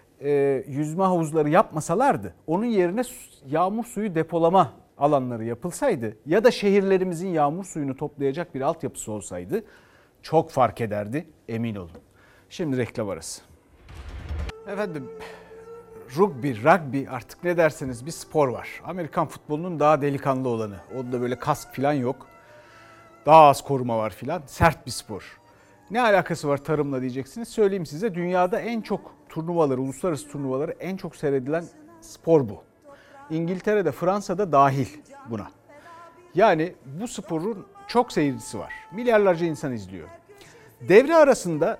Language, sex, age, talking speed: Turkish, male, 60-79, 125 wpm